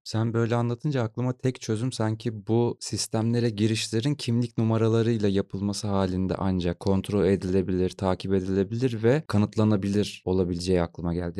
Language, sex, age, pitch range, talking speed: Turkish, male, 30-49, 95-115 Hz, 125 wpm